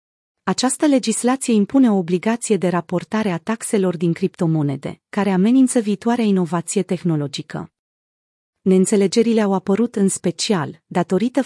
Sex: female